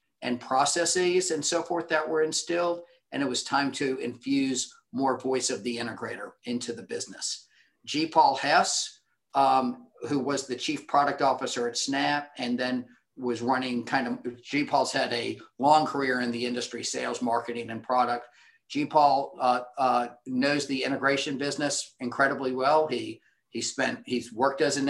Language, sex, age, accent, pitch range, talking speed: English, male, 50-69, American, 130-155 Hz, 170 wpm